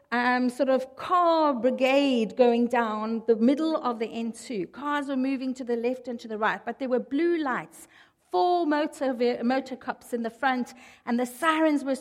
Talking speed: 185 wpm